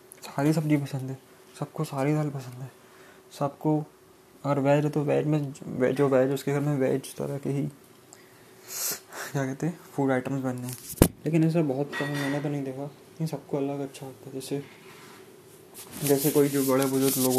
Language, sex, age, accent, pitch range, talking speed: Hindi, male, 20-39, native, 130-150 Hz, 185 wpm